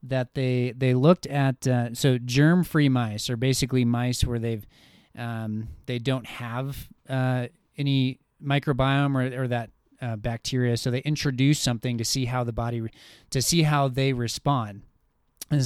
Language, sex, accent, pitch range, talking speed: English, male, American, 125-150 Hz, 160 wpm